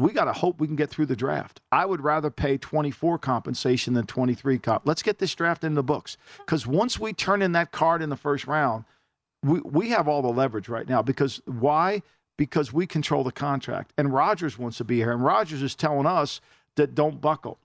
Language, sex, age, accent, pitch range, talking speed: English, male, 50-69, American, 140-175 Hz, 225 wpm